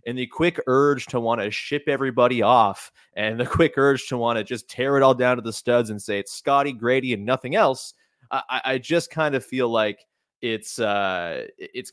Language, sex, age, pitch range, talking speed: English, male, 30-49, 110-140 Hz, 215 wpm